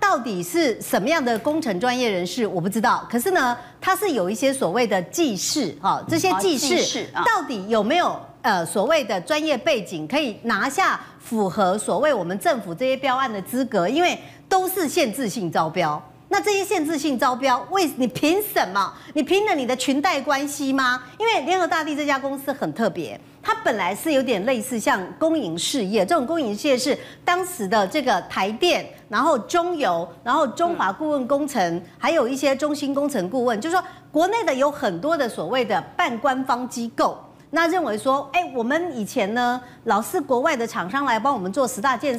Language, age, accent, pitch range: Chinese, 50-69, American, 240-335 Hz